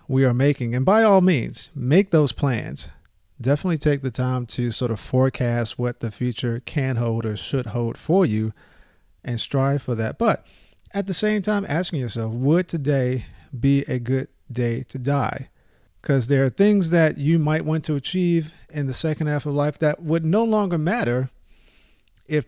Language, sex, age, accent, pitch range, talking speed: English, male, 40-59, American, 125-160 Hz, 185 wpm